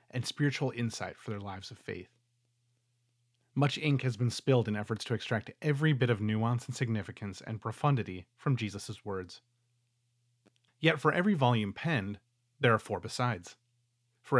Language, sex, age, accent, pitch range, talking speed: English, male, 30-49, American, 110-130 Hz, 160 wpm